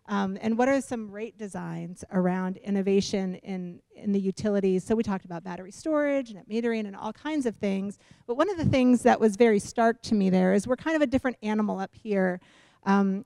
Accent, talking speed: American, 215 wpm